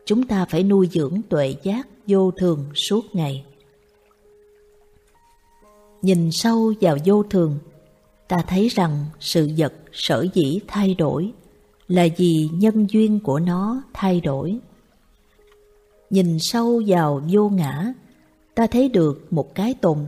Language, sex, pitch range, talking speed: Vietnamese, female, 150-210 Hz, 130 wpm